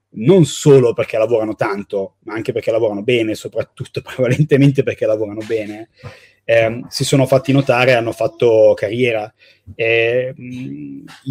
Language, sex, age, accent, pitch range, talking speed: Italian, male, 30-49, native, 115-135 Hz, 125 wpm